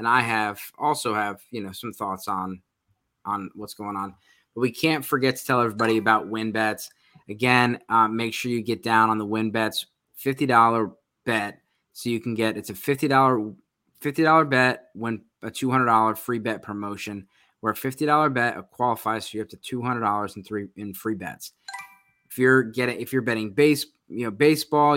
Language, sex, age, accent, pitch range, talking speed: English, male, 20-39, American, 110-130 Hz, 185 wpm